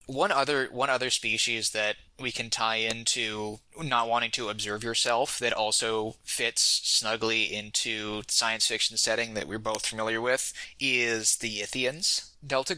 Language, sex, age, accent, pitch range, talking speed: English, male, 20-39, American, 110-130 Hz, 150 wpm